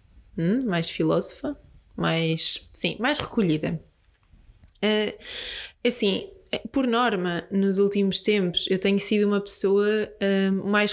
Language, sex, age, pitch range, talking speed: Portuguese, female, 20-39, 185-225 Hz, 115 wpm